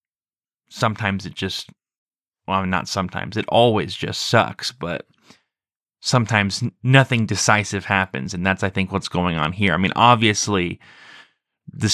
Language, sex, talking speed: English, male, 135 wpm